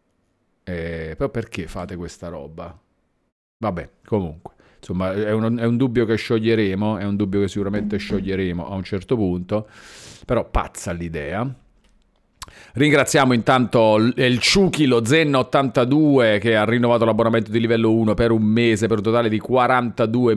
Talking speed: 145 wpm